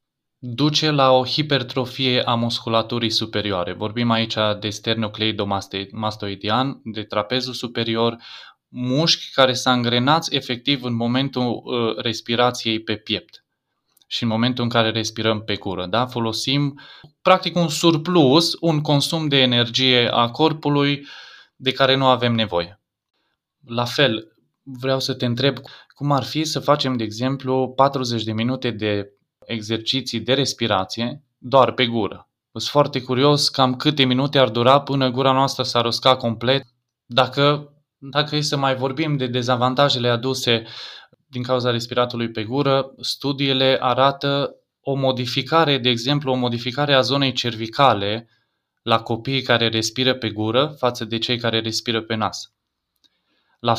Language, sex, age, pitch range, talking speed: Romanian, male, 20-39, 115-140 Hz, 135 wpm